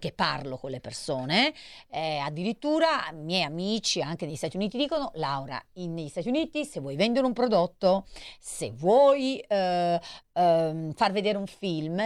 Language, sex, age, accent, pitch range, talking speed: Italian, female, 40-59, native, 165-260 Hz, 165 wpm